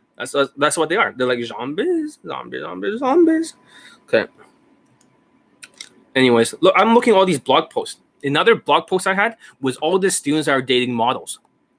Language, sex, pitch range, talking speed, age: English, male, 130-185 Hz, 165 wpm, 20-39